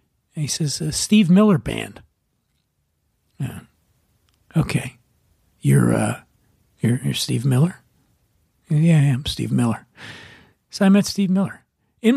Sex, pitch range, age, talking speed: male, 155-210 Hz, 40-59, 125 wpm